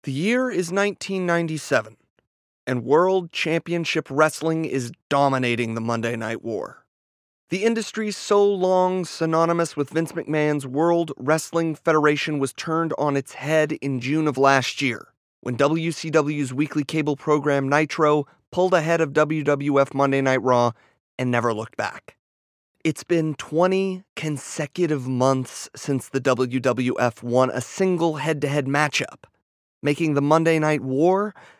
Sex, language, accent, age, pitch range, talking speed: male, English, American, 30-49, 135-165 Hz, 135 wpm